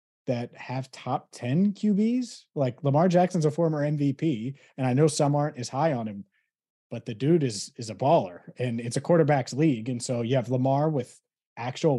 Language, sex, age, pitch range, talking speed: English, male, 30-49, 120-145 Hz, 195 wpm